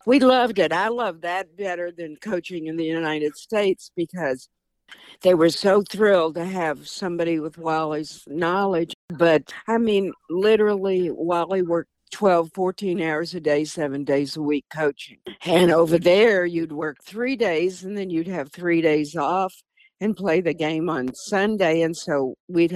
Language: English